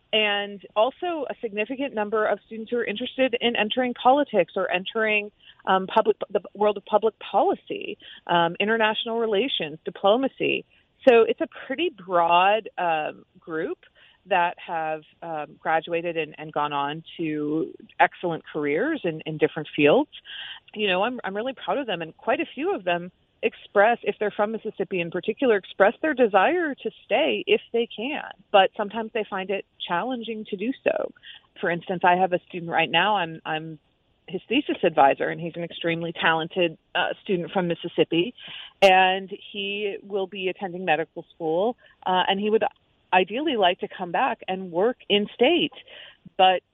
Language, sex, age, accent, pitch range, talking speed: English, female, 30-49, American, 175-225 Hz, 165 wpm